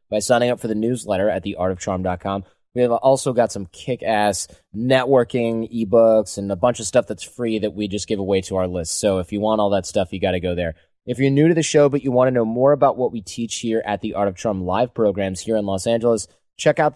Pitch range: 100-125 Hz